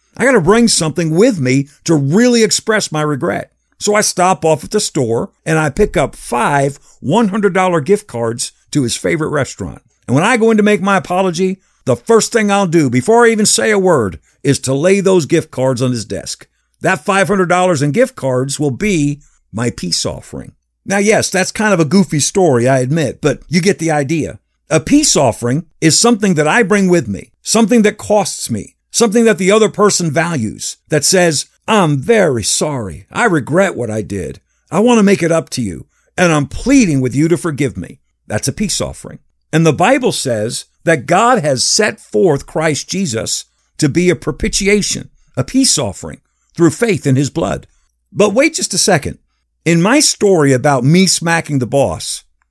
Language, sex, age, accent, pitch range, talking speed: English, male, 50-69, American, 135-205 Hz, 195 wpm